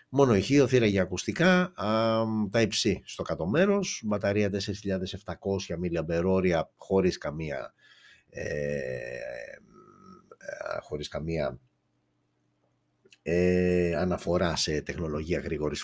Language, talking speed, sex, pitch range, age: Greek, 75 wpm, male, 85-115 Hz, 60-79